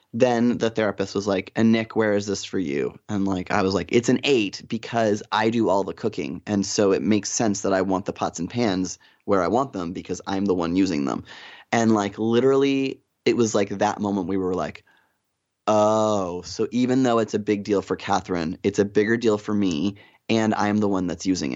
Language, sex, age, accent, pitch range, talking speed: English, male, 20-39, American, 95-115 Hz, 225 wpm